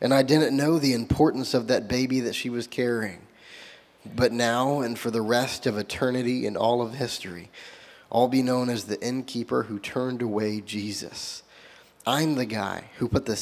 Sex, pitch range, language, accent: male, 110-135 Hz, English, American